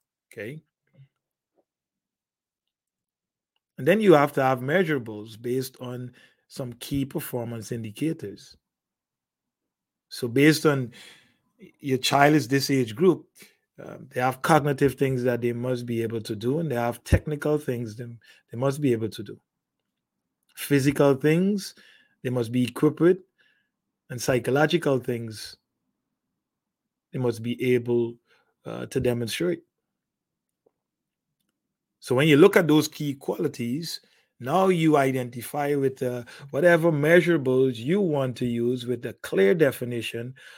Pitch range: 120-150 Hz